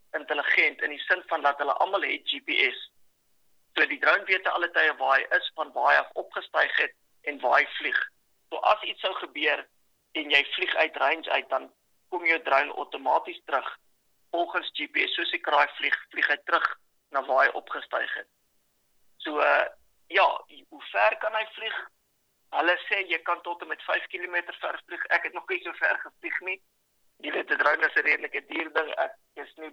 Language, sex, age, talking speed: English, male, 50-69, 195 wpm